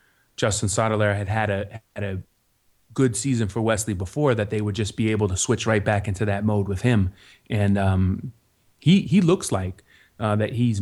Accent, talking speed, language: American, 200 wpm, English